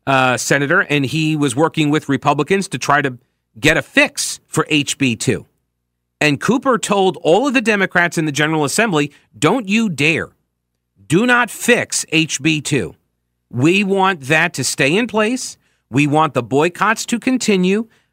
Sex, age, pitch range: male, 40-59, 130-180 Hz